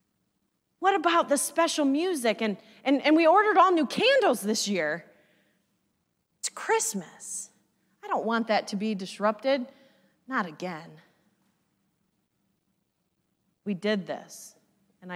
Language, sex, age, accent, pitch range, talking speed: English, female, 30-49, American, 195-315 Hz, 120 wpm